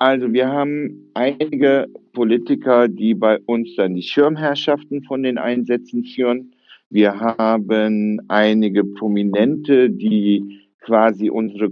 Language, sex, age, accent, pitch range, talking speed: German, male, 60-79, German, 110-125 Hz, 115 wpm